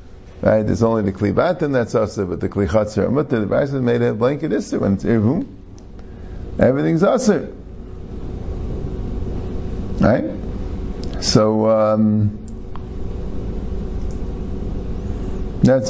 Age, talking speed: 50-69, 95 wpm